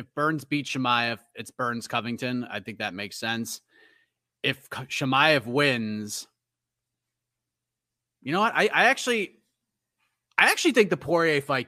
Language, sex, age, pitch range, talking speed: English, male, 30-49, 115-155 Hz, 140 wpm